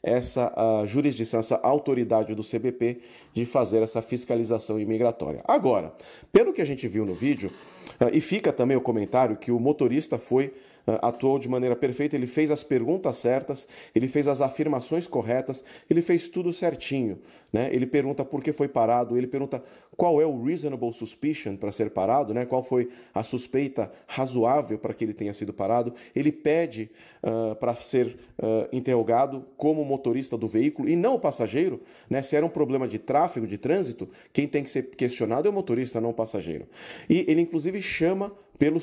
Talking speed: 175 wpm